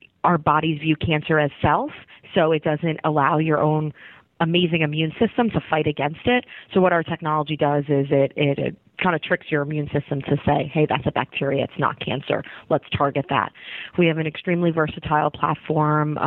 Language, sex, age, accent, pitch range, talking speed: English, female, 30-49, American, 145-160 Hz, 190 wpm